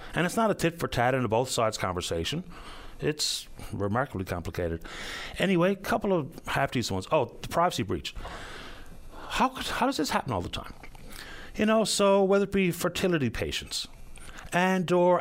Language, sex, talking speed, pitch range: English, male, 175 wpm, 110-160 Hz